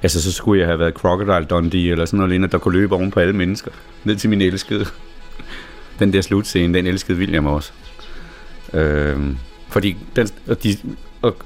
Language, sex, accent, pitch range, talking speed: Danish, male, native, 90-110 Hz, 175 wpm